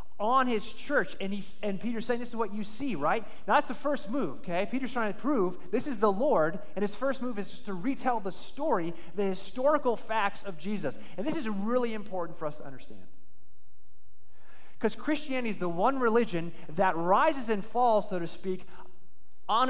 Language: English